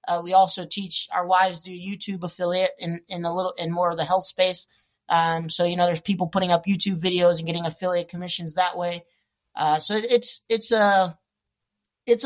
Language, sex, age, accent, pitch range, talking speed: English, male, 20-39, American, 175-195 Hz, 200 wpm